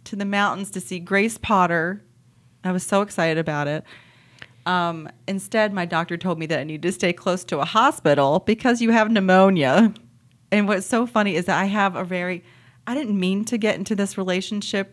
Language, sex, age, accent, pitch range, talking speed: English, female, 30-49, American, 155-210 Hz, 200 wpm